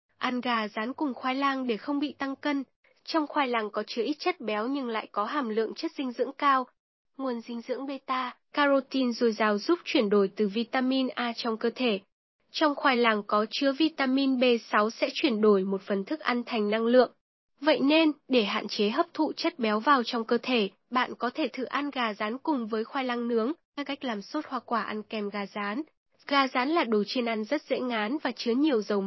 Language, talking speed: Vietnamese, 225 wpm